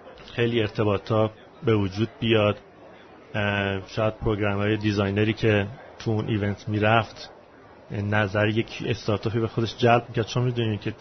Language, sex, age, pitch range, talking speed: Persian, male, 30-49, 105-125 Hz, 130 wpm